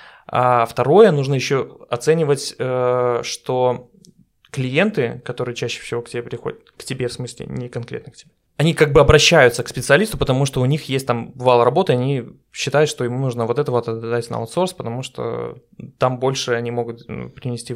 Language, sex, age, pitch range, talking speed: Russian, male, 20-39, 120-145 Hz, 180 wpm